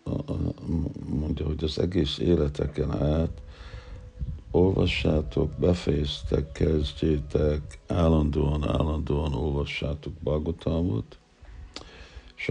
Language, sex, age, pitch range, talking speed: Hungarian, male, 60-79, 70-80 Hz, 65 wpm